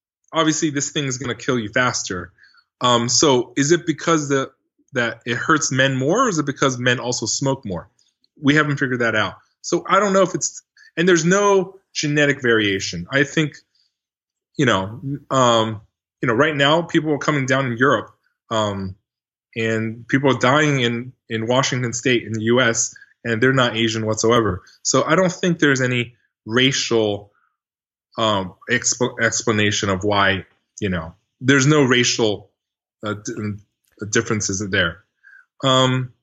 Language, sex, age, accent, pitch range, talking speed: English, male, 20-39, American, 115-165 Hz, 160 wpm